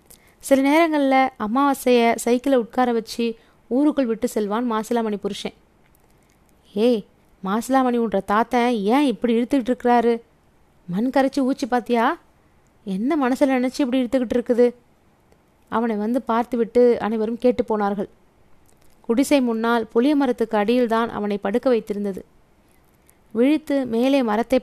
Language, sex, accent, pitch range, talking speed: Tamil, female, native, 220-255 Hz, 105 wpm